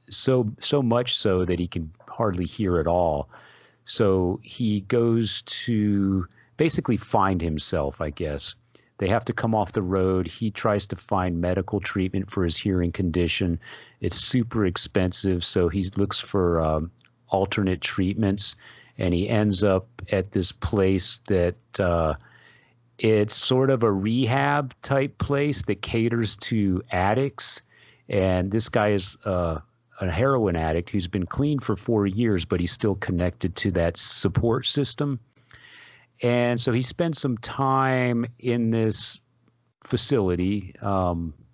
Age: 40-59